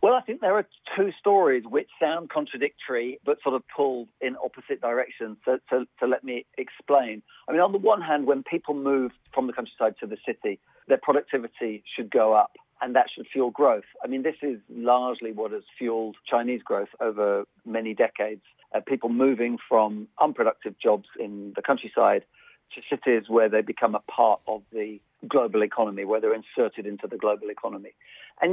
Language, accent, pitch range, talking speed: English, British, 110-170 Hz, 185 wpm